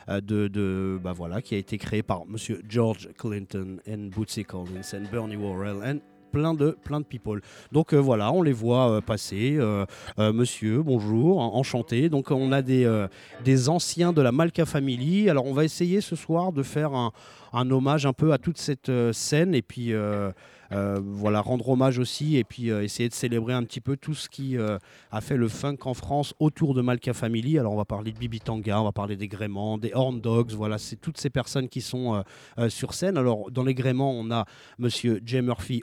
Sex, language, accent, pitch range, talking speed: male, French, French, 105-140 Hz, 220 wpm